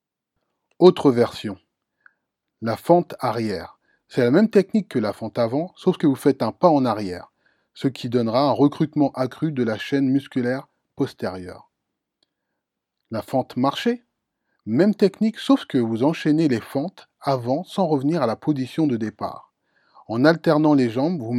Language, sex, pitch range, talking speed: French, male, 120-165 Hz, 155 wpm